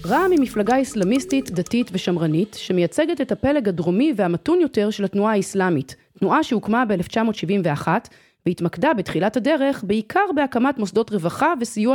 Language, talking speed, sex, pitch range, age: Hebrew, 130 wpm, female, 175-255 Hz, 30-49